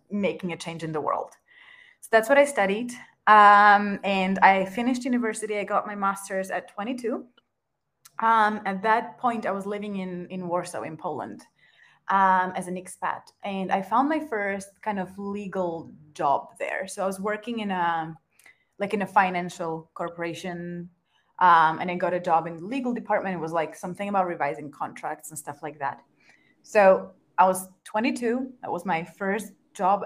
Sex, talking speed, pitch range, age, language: female, 180 wpm, 175-210 Hz, 20-39, English